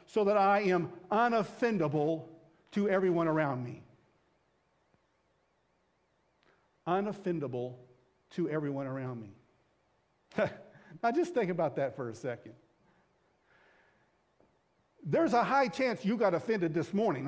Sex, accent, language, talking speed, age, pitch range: male, American, English, 110 wpm, 50-69, 165-250 Hz